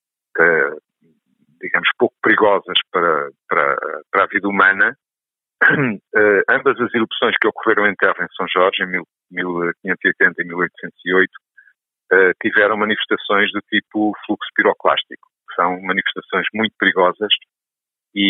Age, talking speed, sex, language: 50-69, 125 wpm, male, Portuguese